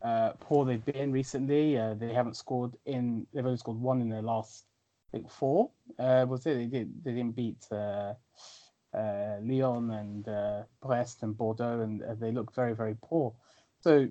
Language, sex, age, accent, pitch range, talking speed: English, male, 20-39, British, 110-135 Hz, 185 wpm